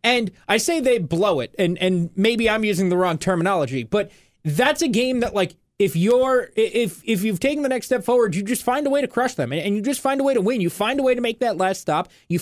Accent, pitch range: American, 180-235 Hz